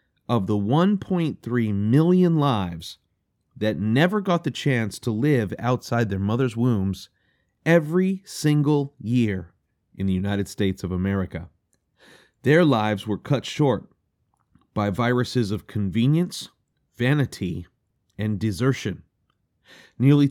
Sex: male